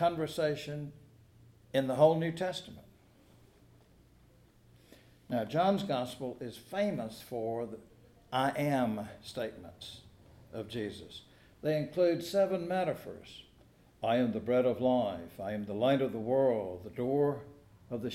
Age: 60-79